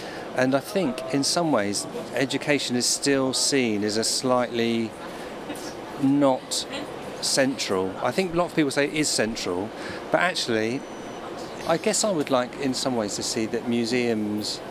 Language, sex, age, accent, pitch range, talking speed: English, male, 50-69, British, 110-140 Hz, 160 wpm